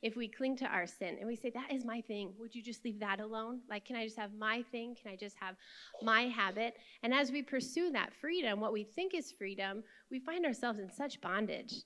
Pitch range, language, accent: 215-265 Hz, English, American